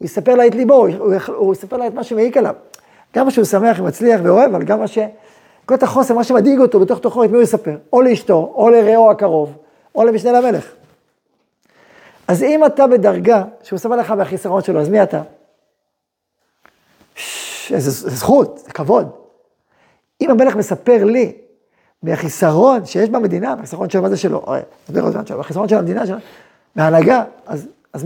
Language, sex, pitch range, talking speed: Hebrew, male, 195-245 Hz, 165 wpm